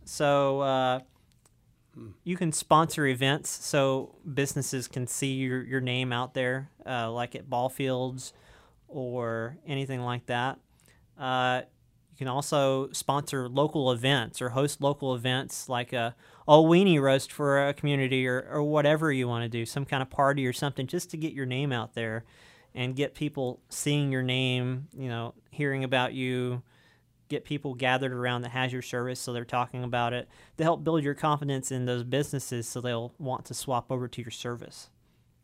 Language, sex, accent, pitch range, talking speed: English, male, American, 125-145 Hz, 175 wpm